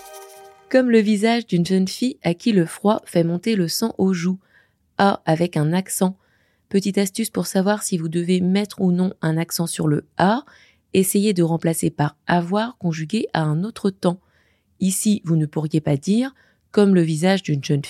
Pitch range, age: 155-200 Hz, 20-39